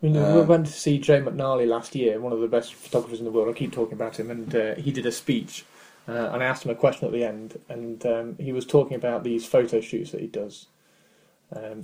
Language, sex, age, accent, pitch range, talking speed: English, male, 20-39, British, 115-140 Hz, 255 wpm